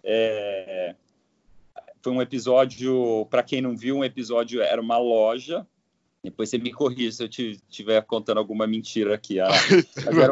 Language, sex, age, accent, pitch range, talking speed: Portuguese, male, 40-59, Brazilian, 110-140 Hz, 145 wpm